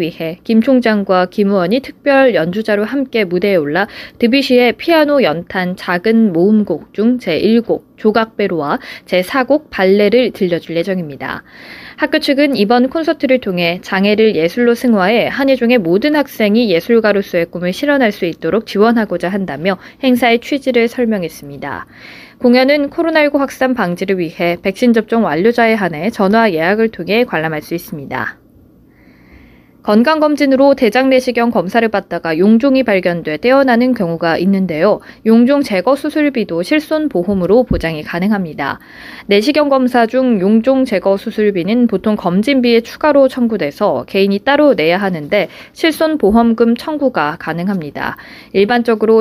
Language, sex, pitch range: Korean, female, 185-260 Hz